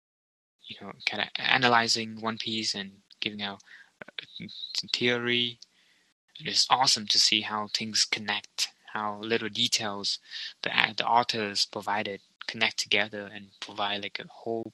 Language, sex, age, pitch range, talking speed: English, male, 20-39, 100-115 Hz, 130 wpm